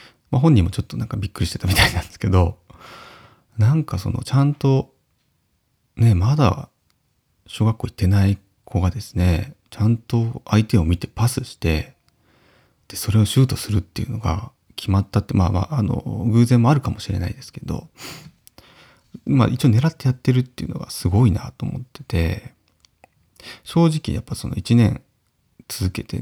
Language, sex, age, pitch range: Japanese, male, 30-49, 100-125 Hz